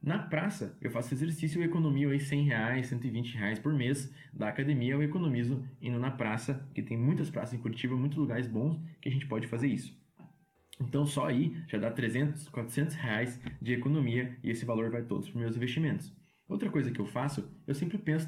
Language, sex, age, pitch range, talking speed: Portuguese, male, 20-39, 115-150 Hz, 205 wpm